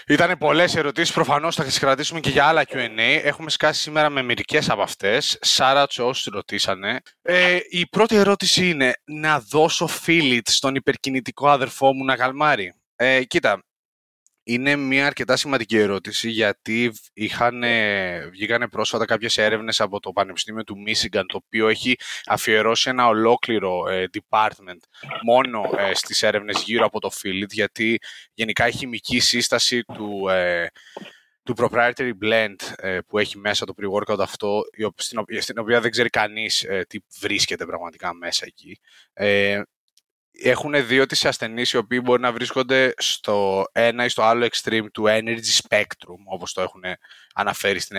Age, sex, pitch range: 20-39, male, 110-135 Hz